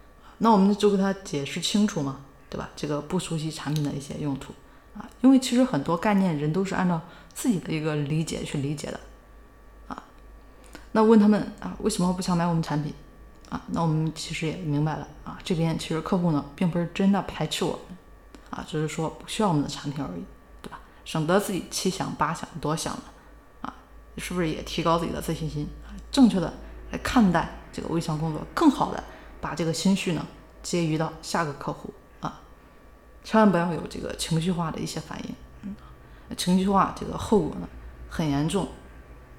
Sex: female